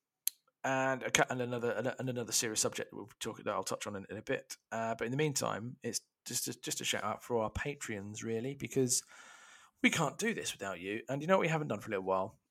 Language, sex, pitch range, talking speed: English, male, 105-145 Hz, 250 wpm